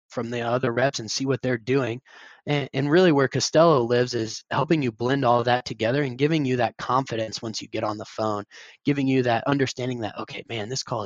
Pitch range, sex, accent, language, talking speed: 115-135 Hz, male, American, English, 230 wpm